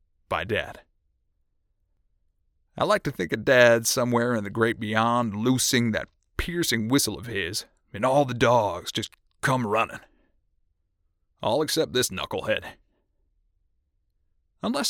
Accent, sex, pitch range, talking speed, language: American, male, 95-140 Hz, 125 wpm, English